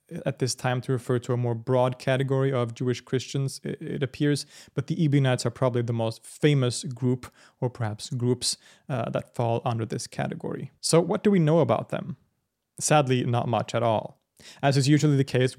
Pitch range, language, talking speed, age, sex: 115-140 Hz, English, 190 wpm, 30-49, male